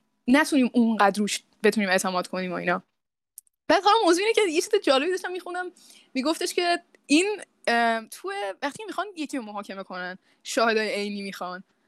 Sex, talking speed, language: female, 150 wpm, Persian